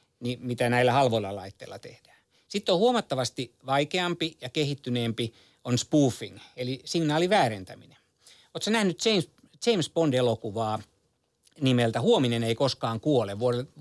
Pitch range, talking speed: 115-150 Hz, 115 wpm